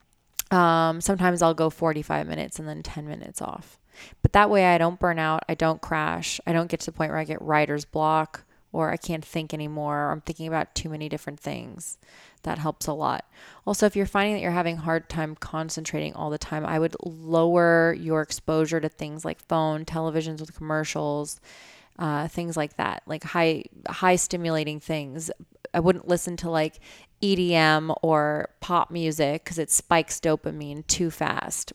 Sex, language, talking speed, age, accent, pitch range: female, English, 185 wpm, 20-39, American, 155-175 Hz